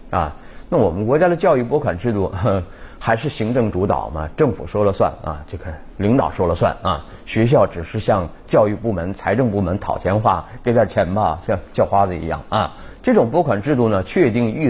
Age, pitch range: 30-49, 95-120 Hz